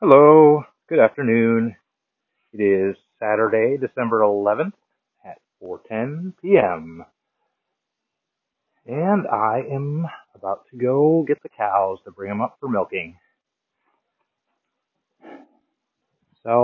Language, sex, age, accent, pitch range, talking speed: English, male, 30-49, American, 100-130 Hz, 95 wpm